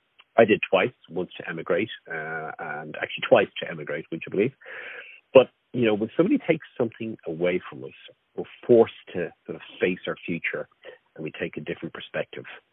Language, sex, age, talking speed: English, male, 50-69, 185 wpm